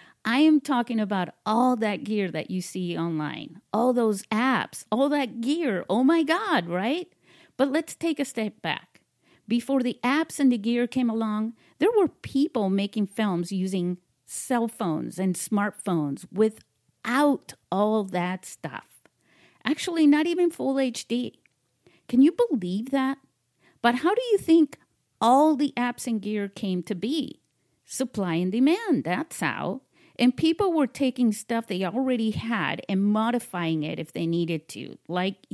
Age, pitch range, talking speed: 50-69, 190-275 Hz, 155 wpm